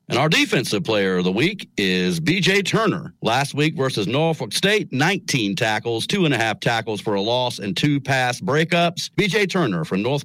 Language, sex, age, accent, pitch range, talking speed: English, male, 50-69, American, 130-175 Hz, 195 wpm